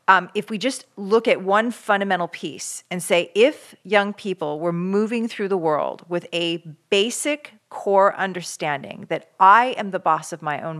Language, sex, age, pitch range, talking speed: English, female, 40-59, 165-205 Hz, 180 wpm